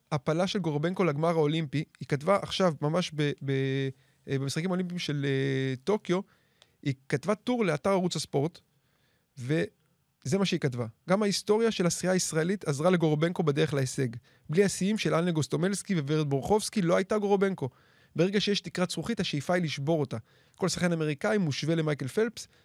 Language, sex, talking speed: Hebrew, male, 160 wpm